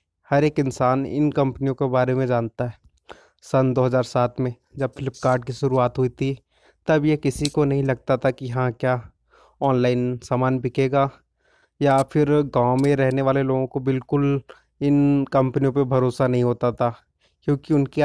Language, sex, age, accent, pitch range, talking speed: Hindi, male, 30-49, native, 125-140 Hz, 165 wpm